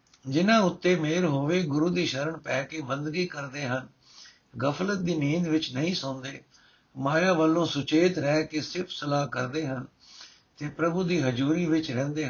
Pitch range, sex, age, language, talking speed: 135-160 Hz, male, 60-79, Punjabi, 160 wpm